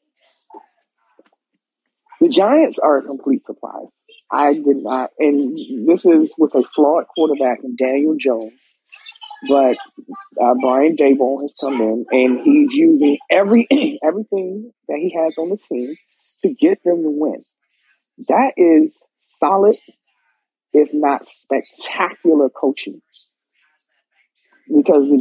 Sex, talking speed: male, 120 wpm